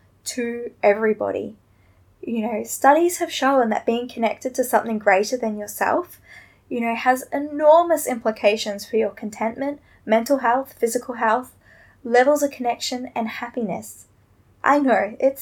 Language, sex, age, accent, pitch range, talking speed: English, female, 10-29, Australian, 220-275 Hz, 135 wpm